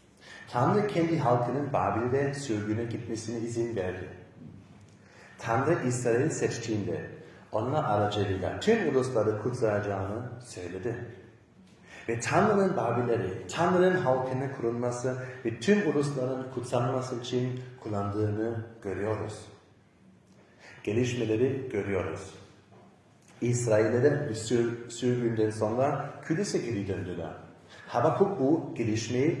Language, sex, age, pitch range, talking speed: Turkish, male, 40-59, 105-130 Hz, 85 wpm